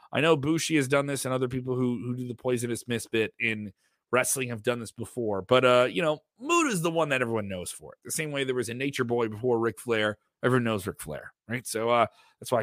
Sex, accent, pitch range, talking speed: male, American, 110-135 Hz, 255 wpm